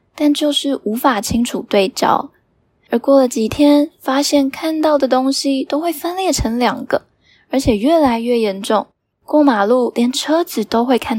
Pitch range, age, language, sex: 220-280 Hz, 10-29, Chinese, female